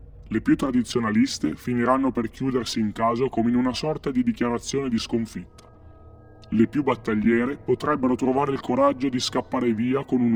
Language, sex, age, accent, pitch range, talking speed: Italian, female, 30-49, native, 95-130 Hz, 160 wpm